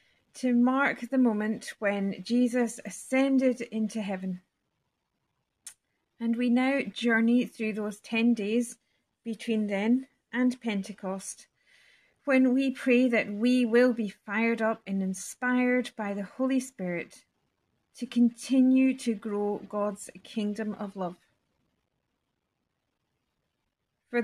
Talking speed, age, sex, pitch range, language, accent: 110 wpm, 30-49, female, 200-245 Hz, English, British